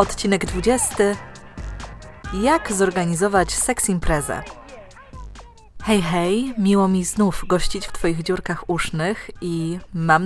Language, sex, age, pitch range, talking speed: Polish, female, 20-39, 160-215 Hz, 105 wpm